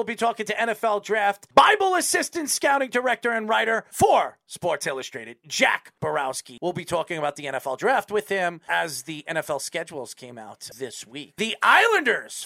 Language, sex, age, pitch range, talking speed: English, male, 40-59, 160-235 Hz, 175 wpm